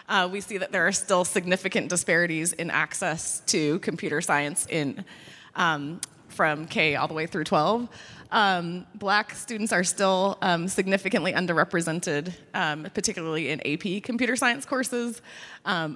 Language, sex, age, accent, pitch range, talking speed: English, female, 20-39, American, 165-215 Hz, 145 wpm